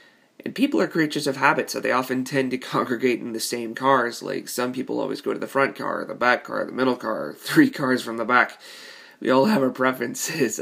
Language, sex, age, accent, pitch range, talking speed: English, male, 20-39, American, 125-160 Hz, 230 wpm